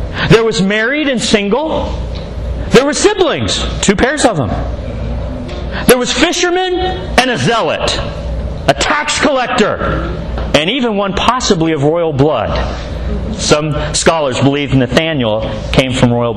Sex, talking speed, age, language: male, 130 wpm, 40-59, English